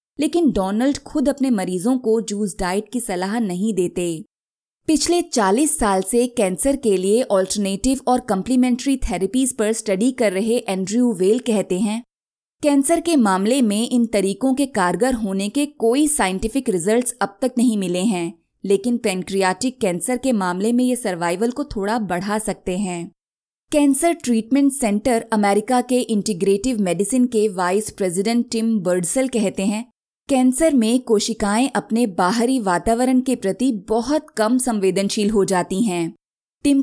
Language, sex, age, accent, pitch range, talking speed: Hindi, female, 20-39, native, 195-250 Hz, 150 wpm